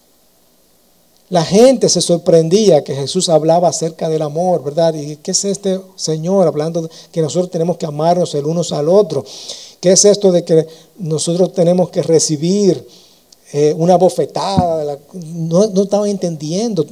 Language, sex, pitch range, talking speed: Spanish, male, 150-190 Hz, 150 wpm